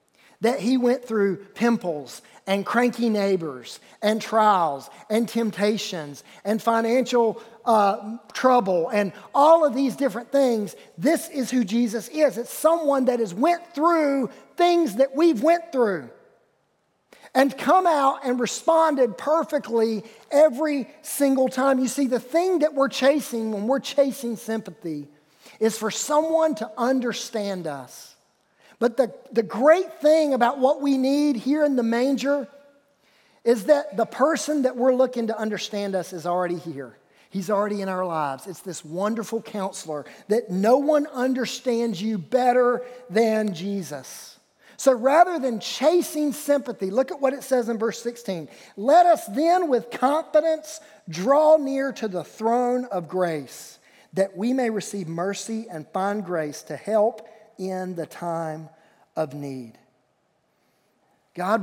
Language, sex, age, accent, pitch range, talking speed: English, male, 40-59, American, 195-270 Hz, 145 wpm